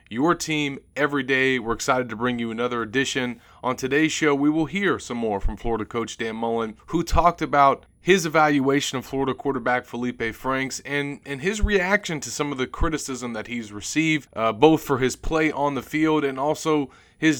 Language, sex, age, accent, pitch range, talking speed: English, male, 30-49, American, 120-145 Hz, 195 wpm